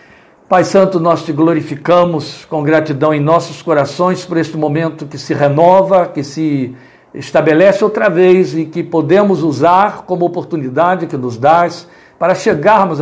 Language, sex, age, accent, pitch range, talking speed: Portuguese, male, 60-79, Brazilian, 155-185 Hz, 145 wpm